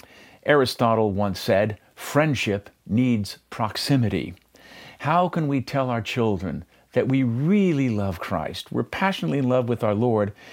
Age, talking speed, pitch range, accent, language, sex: 50-69, 135 wpm, 105-140 Hz, American, English, male